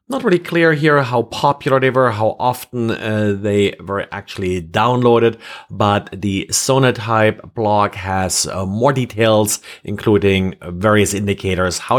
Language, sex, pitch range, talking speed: English, male, 100-125 Hz, 135 wpm